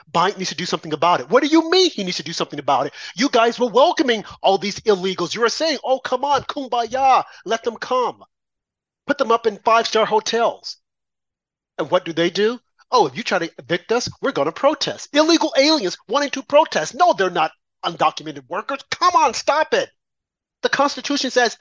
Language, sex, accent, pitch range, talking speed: English, male, American, 180-260 Hz, 205 wpm